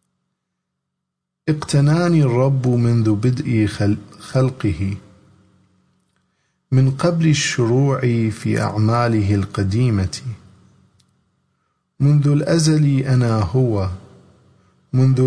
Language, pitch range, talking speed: English, 100-130 Hz, 65 wpm